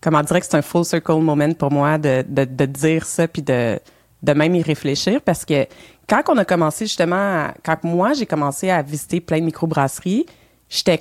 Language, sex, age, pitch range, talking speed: French, female, 30-49, 150-195 Hz, 215 wpm